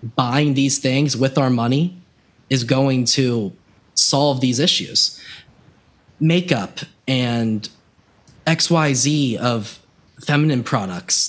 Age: 20-39